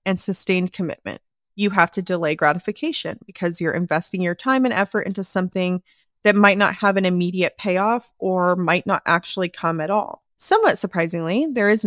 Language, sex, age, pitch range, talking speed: English, female, 20-39, 175-210 Hz, 175 wpm